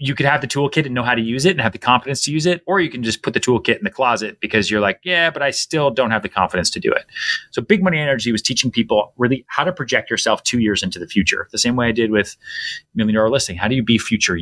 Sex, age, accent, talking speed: male, 30-49, American, 300 wpm